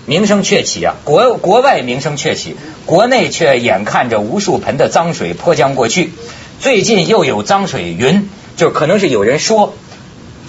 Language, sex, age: Chinese, male, 50-69